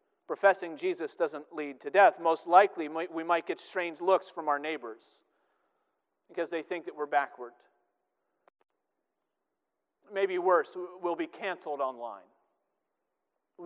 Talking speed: 125 wpm